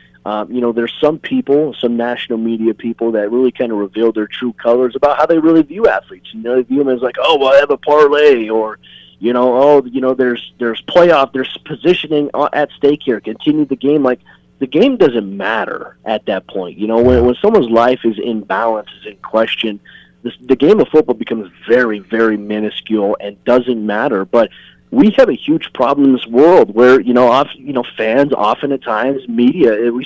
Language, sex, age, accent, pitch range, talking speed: English, male, 30-49, American, 115-140 Hz, 215 wpm